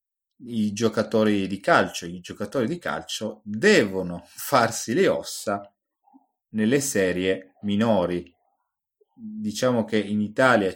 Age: 30-49